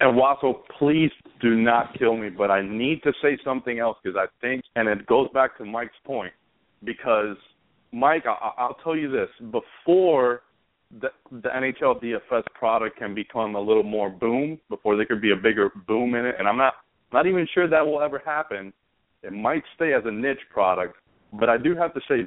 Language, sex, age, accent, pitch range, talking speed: English, male, 40-59, American, 110-150 Hz, 200 wpm